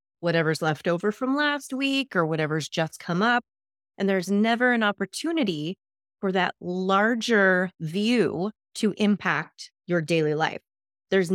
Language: English